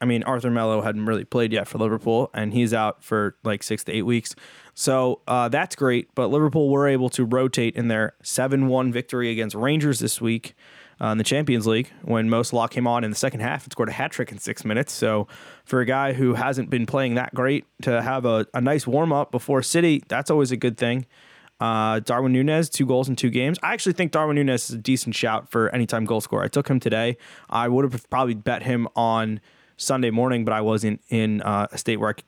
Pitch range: 110-130 Hz